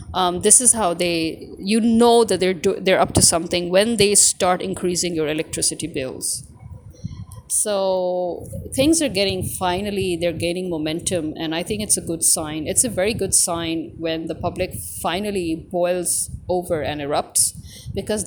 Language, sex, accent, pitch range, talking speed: English, female, Indian, 165-200 Hz, 165 wpm